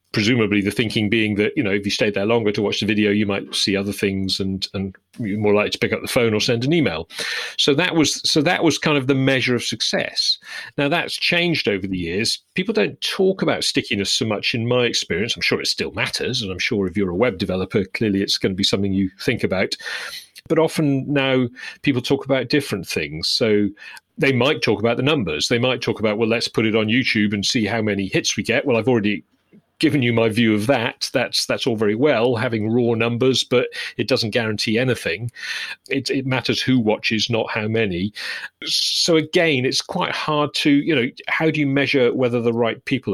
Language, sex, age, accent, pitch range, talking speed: English, male, 40-59, British, 105-140 Hz, 225 wpm